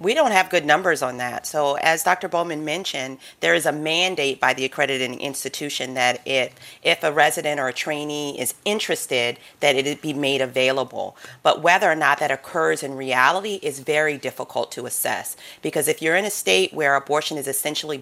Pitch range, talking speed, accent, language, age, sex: 135-165 Hz, 195 wpm, American, English, 40-59, female